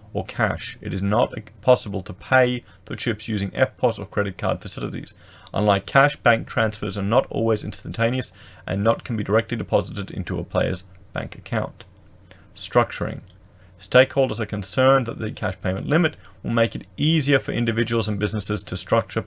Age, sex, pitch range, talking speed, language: 30-49, male, 95-115 Hz, 170 wpm, English